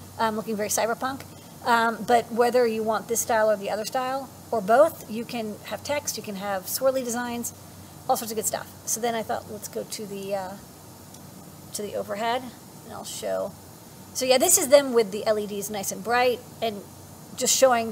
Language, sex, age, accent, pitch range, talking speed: English, female, 40-59, American, 215-250 Hz, 205 wpm